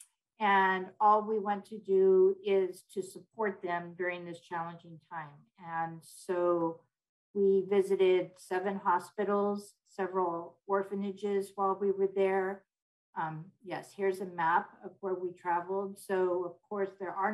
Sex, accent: female, American